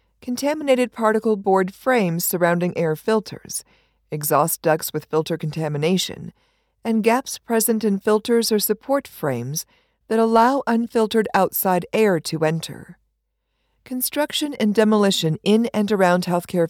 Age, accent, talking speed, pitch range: 50-69, American, 120 wpm, 170-230 Hz